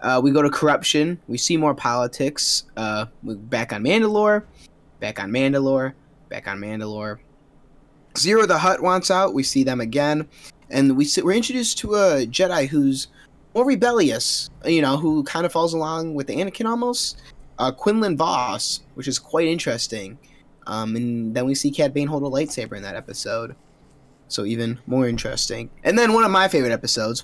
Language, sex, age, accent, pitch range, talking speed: English, male, 20-39, American, 120-155 Hz, 175 wpm